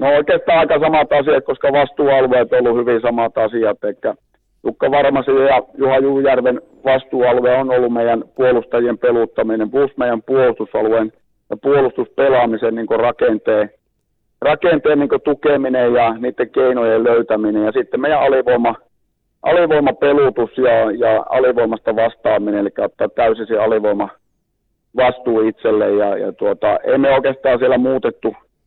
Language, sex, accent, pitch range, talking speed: Finnish, male, native, 115-135 Hz, 120 wpm